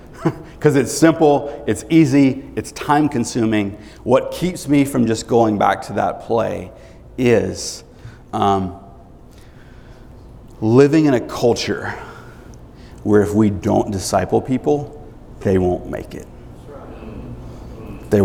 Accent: American